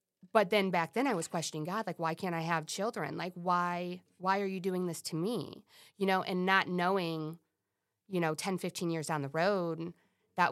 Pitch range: 165-195 Hz